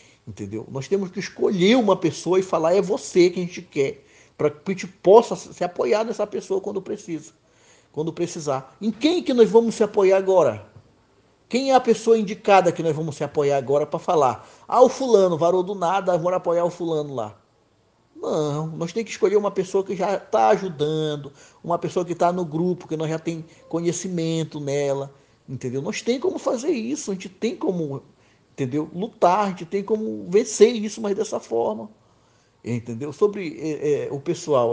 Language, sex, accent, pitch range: Portuguese, male, Brazilian, 150-215 Hz